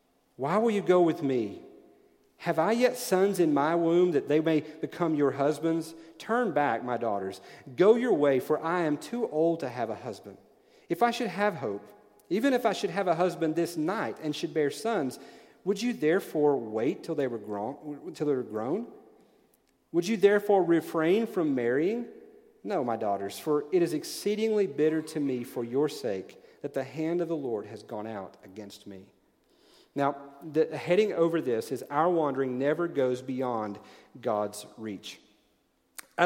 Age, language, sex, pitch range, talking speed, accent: 40-59, English, male, 135-175 Hz, 175 wpm, American